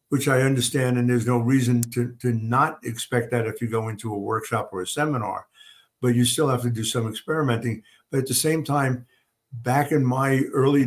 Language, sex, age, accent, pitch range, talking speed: English, male, 50-69, American, 115-130 Hz, 210 wpm